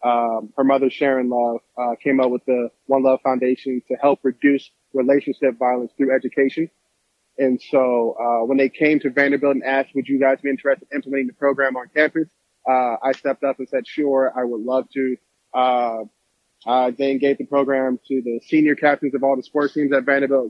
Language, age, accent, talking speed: English, 20-39, American, 200 wpm